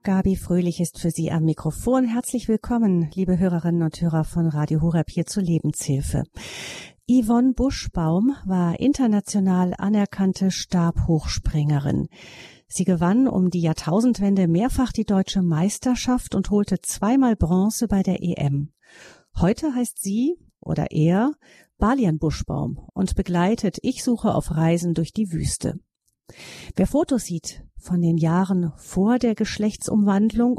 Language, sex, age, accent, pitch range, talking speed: German, female, 40-59, German, 170-215 Hz, 130 wpm